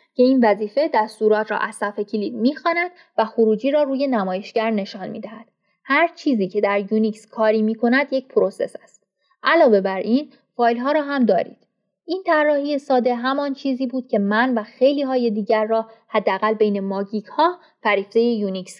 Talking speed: 165 wpm